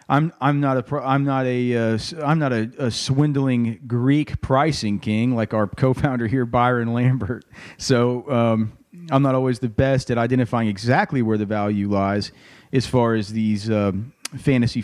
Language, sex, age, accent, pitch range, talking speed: English, male, 40-59, American, 120-165 Hz, 170 wpm